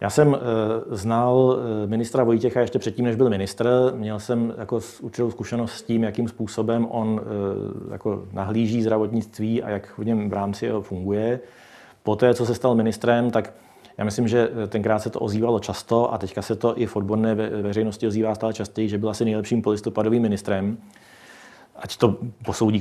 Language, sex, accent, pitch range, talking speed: Czech, male, native, 105-120 Hz, 175 wpm